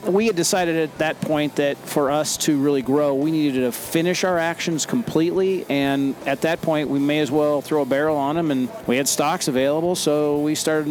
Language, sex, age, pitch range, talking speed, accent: English, male, 40-59, 130-160 Hz, 220 wpm, American